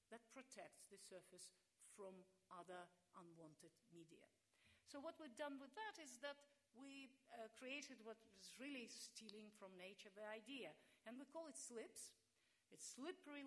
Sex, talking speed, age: female, 150 wpm, 50-69